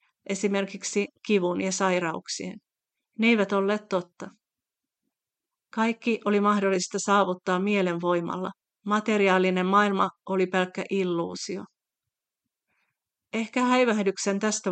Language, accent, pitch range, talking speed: Finnish, native, 185-210 Hz, 85 wpm